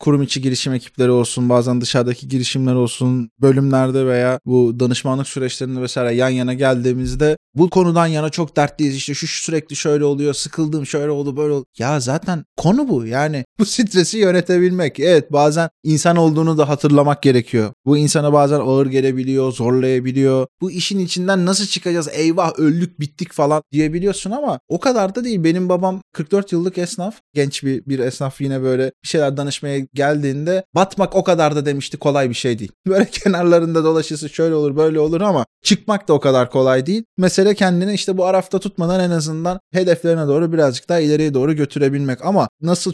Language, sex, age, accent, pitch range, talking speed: Turkish, male, 20-39, native, 135-175 Hz, 175 wpm